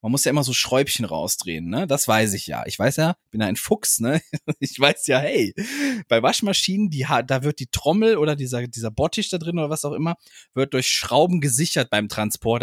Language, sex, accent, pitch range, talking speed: German, male, German, 115-170 Hz, 225 wpm